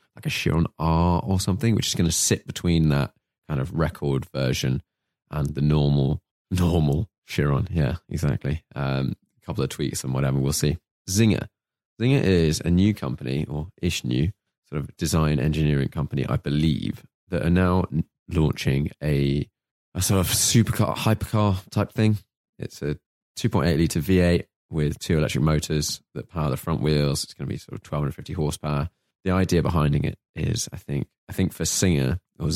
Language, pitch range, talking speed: English, 75-90 Hz, 175 wpm